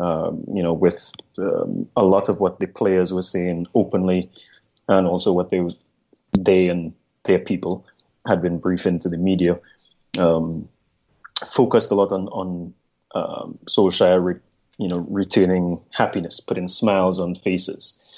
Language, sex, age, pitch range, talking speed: English, male, 30-49, 85-95 Hz, 150 wpm